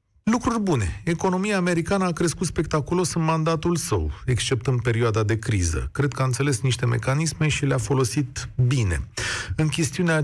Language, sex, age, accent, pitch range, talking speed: Romanian, male, 40-59, native, 125-175 Hz, 160 wpm